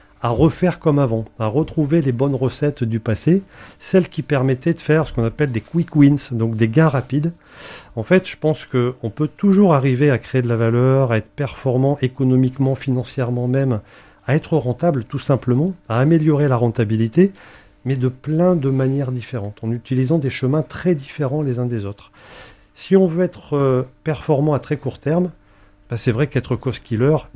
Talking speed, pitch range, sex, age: 185 wpm, 115-150 Hz, male, 40-59